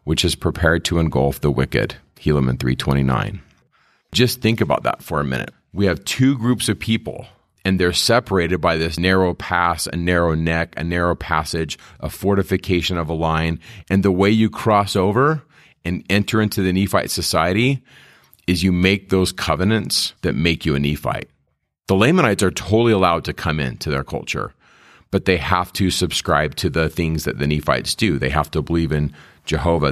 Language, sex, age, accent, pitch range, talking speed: English, male, 40-59, American, 80-100 Hz, 180 wpm